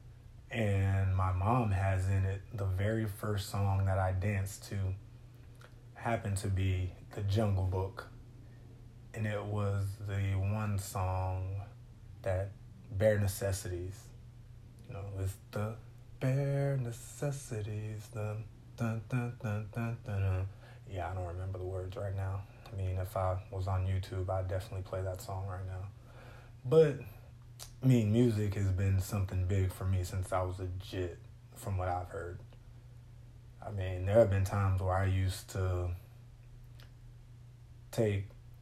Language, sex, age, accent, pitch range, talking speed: English, male, 20-39, American, 95-120 Hz, 145 wpm